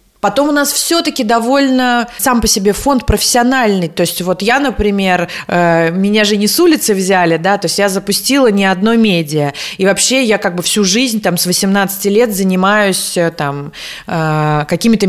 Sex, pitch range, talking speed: female, 180-235 Hz, 170 wpm